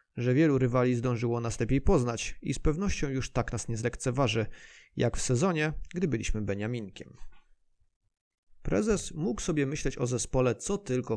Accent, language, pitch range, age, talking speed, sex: native, Polish, 110-130 Hz, 30-49, 155 wpm, male